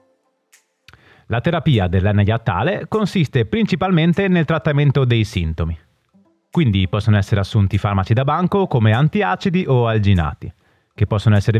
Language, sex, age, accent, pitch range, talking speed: Italian, male, 30-49, native, 100-155 Hz, 120 wpm